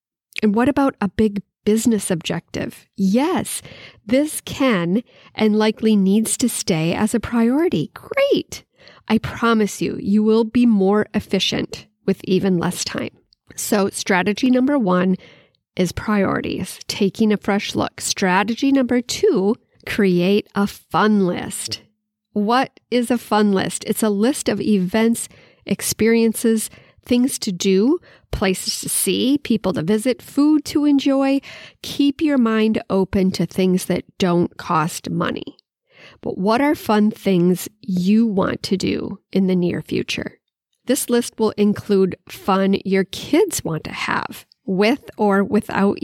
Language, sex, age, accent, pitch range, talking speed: English, female, 40-59, American, 195-240 Hz, 140 wpm